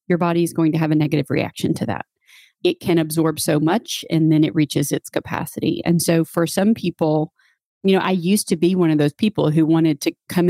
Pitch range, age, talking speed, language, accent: 155-170 Hz, 40-59, 235 wpm, English, American